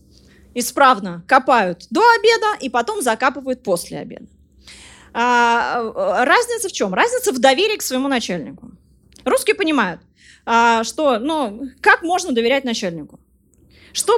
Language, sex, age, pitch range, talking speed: Russian, female, 20-39, 240-330 Hz, 125 wpm